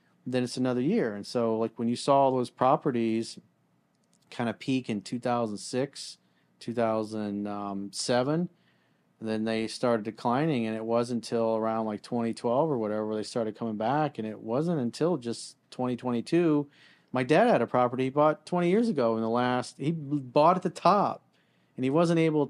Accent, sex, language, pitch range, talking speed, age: American, male, English, 110-150 Hz, 170 wpm, 40-59